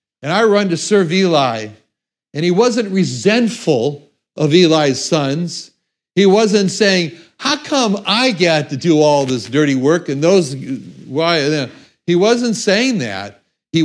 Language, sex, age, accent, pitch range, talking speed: English, male, 60-79, American, 130-185 Hz, 145 wpm